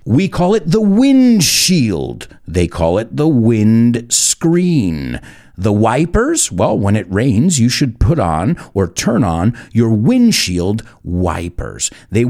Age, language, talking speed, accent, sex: 50-69, English, 135 wpm, American, male